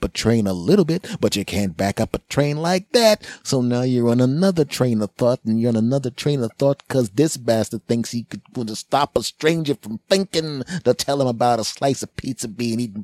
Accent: American